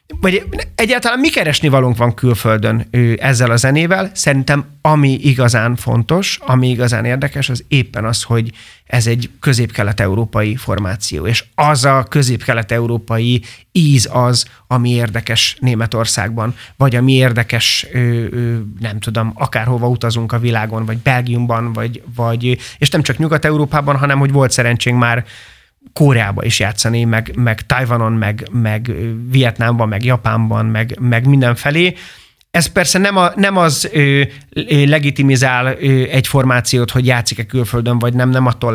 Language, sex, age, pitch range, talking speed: Hungarian, male, 30-49, 115-140 Hz, 140 wpm